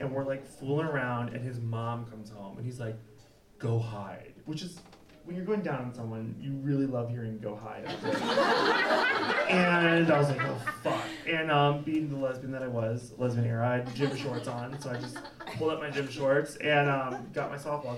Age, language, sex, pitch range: 30-49, English, male, 125-165 Hz